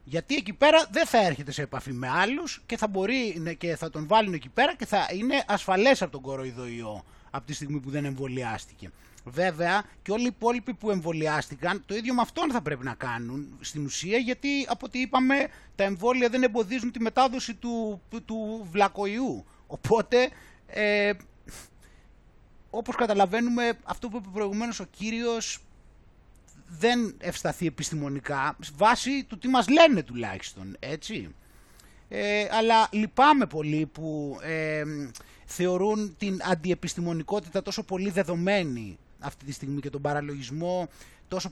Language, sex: Greek, male